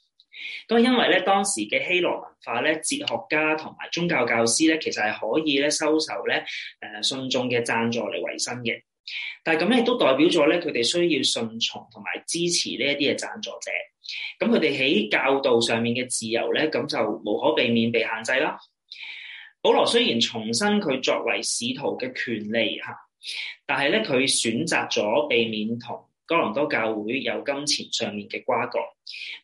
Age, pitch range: 20-39, 115-175 Hz